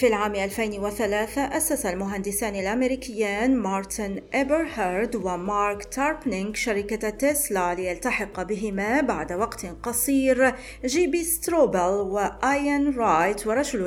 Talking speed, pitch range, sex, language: 100 wpm, 195-255 Hz, female, Arabic